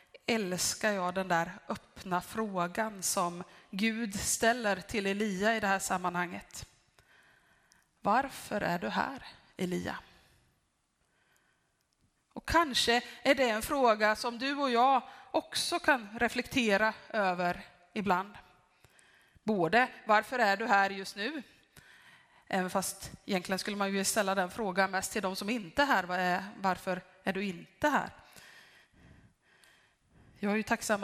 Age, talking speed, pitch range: 20-39, 130 wpm, 195-245 Hz